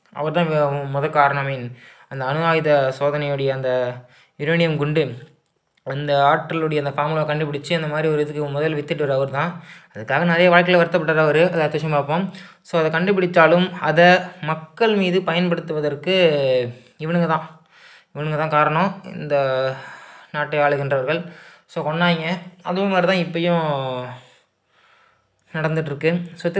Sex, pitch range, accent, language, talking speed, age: male, 150-180 Hz, native, Tamil, 120 wpm, 20-39